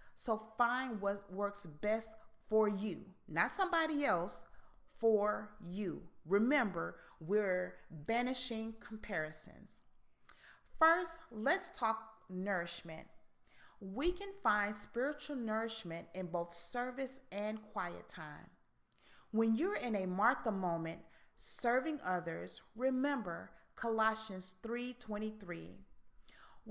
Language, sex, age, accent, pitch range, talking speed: English, female, 40-59, American, 185-245 Hz, 95 wpm